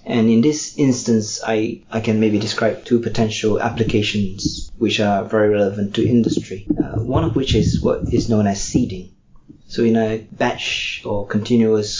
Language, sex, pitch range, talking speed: English, male, 105-115 Hz, 170 wpm